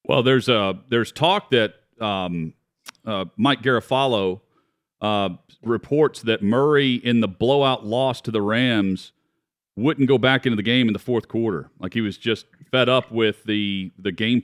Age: 40-59